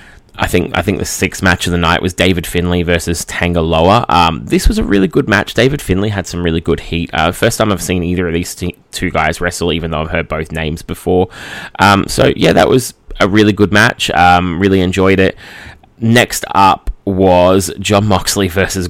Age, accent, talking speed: 10-29, Australian, 215 wpm